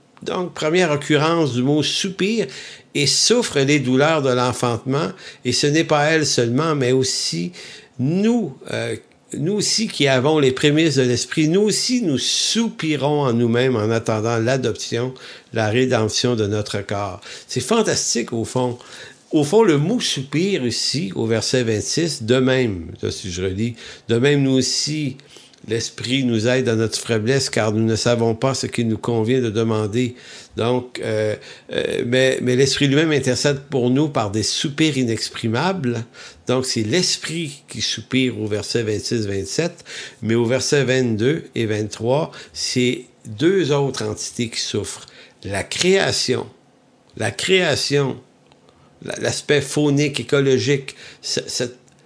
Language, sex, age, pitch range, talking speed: English, male, 50-69, 115-150 Hz, 145 wpm